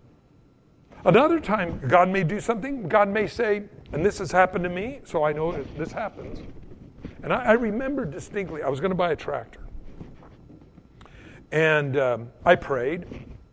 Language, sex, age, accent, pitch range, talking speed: English, male, 60-79, American, 165-230 Hz, 160 wpm